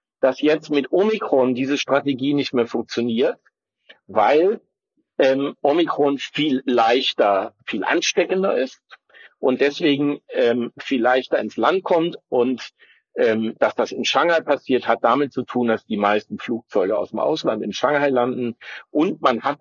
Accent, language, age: German, German, 50-69